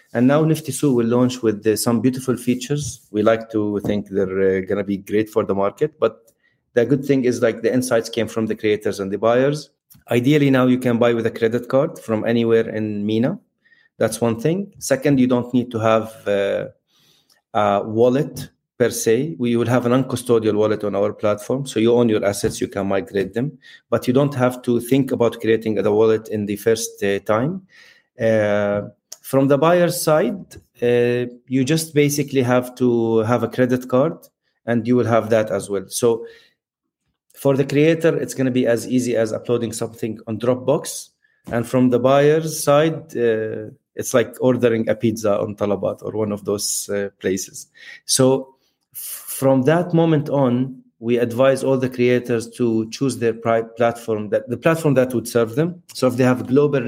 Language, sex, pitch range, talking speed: English, male, 110-135 Hz, 195 wpm